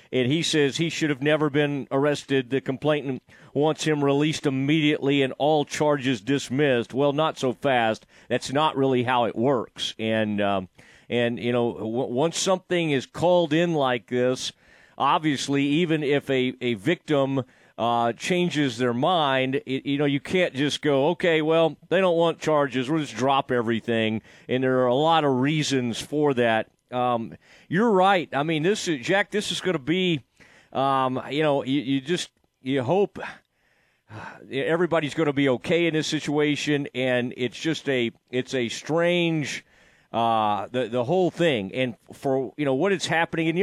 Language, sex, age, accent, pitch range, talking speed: English, male, 40-59, American, 130-165 Hz, 175 wpm